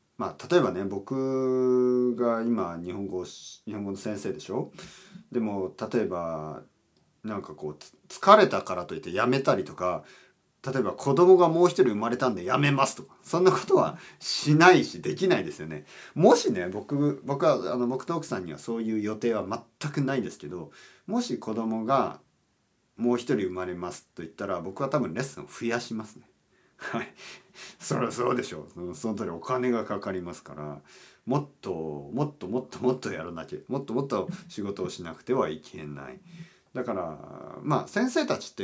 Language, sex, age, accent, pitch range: Japanese, male, 40-59, native, 95-145 Hz